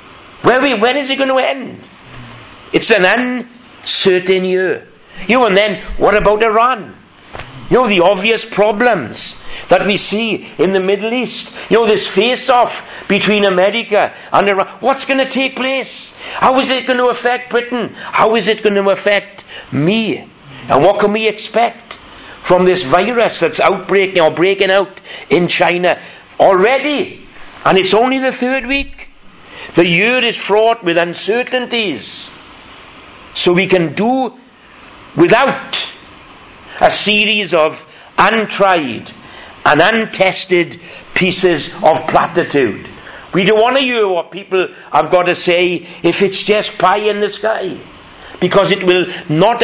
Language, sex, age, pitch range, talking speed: English, male, 60-79, 185-235 Hz, 145 wpm